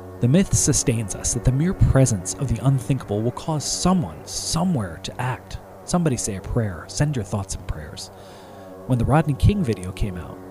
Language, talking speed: English, 190 wpm